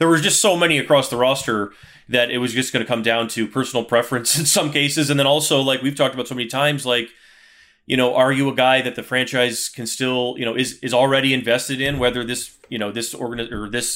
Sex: male